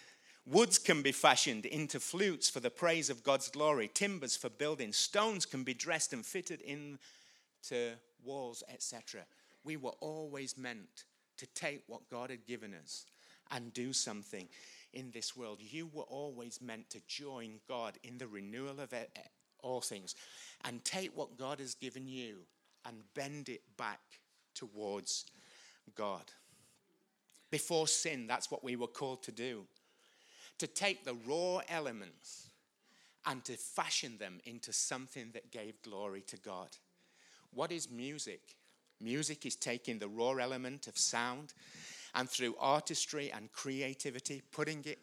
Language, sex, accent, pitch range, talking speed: English, male, British, 120-150 Hz, 145 wpm